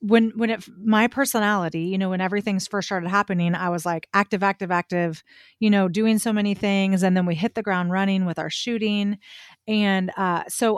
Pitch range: 180-220 Hz